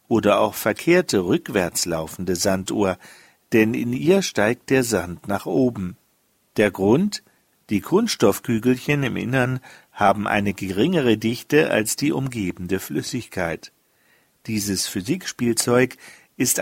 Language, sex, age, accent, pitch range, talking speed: German, male, 50-69, German, 105-140 Hz, 110 wpm